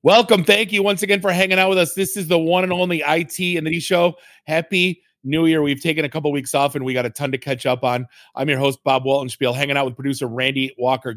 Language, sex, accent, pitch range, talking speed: English, male, American, 130-155 Hz, 270 wpm